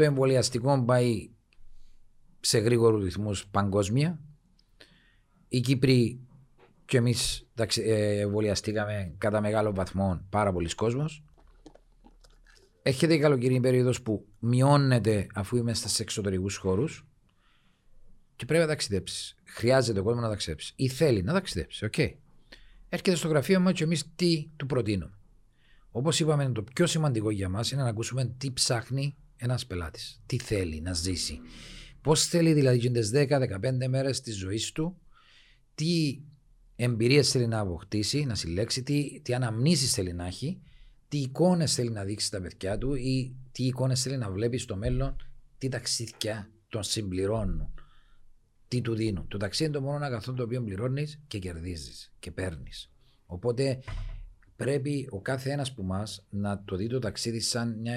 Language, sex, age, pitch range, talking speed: Greek, male, 40-59, 105-135 Hz, 145 wpm